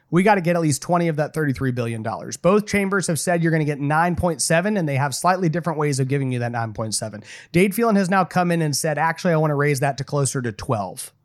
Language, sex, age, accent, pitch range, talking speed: English, male, 30-49, American, 130-170 Hz, 260 wpm